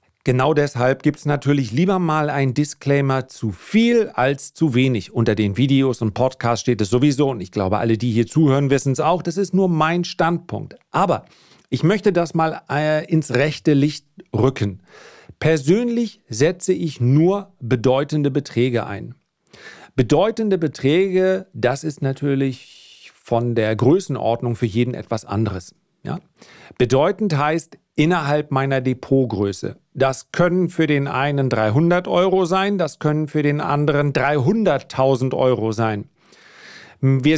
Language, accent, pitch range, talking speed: German, German, 125-160 Hz, 140 wpm